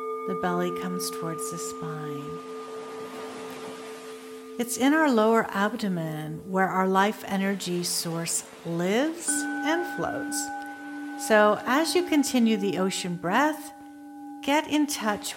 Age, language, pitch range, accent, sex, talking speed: 50-69, English, 190-280 Hz, American, female, 115 wpm